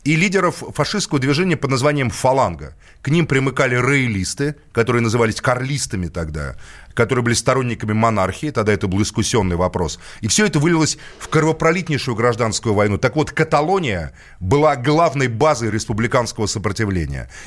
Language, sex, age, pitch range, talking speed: Russian, male, 30-49, 110-145 Hz, 135 wpm